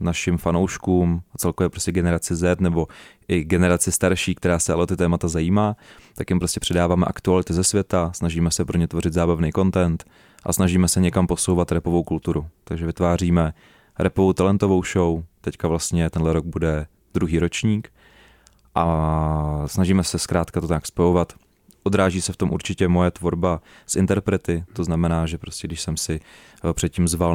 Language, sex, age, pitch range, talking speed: Czech, male, 30-49, 85-95 Hz, 165 wpm